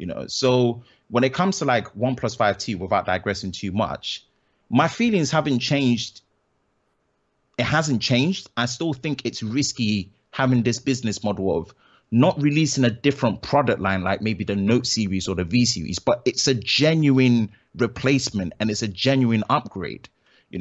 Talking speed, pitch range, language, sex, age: 165 wpm, 105-130 Hz, English, male, 30-49